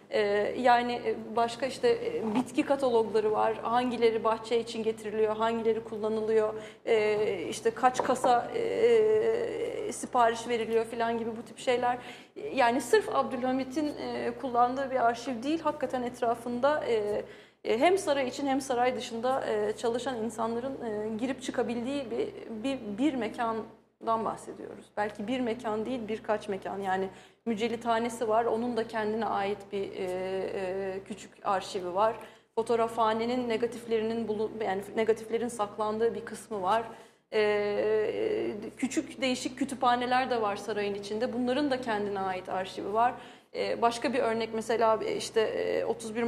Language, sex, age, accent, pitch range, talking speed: Turkish, female, 30-49, native, 220-260 Hz, 120 wpm